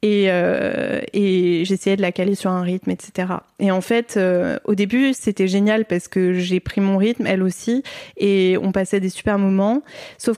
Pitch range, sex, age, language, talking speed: 190-225 Hz, female, 20-39, French, 195 wpm